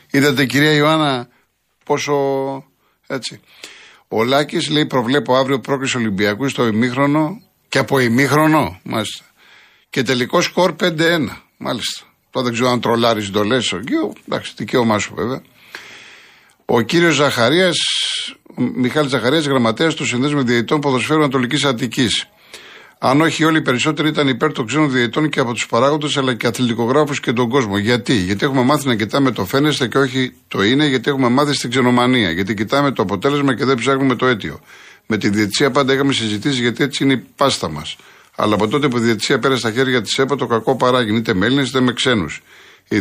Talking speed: 175 wpm